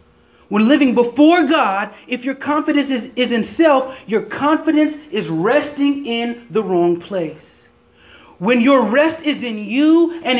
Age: 30-49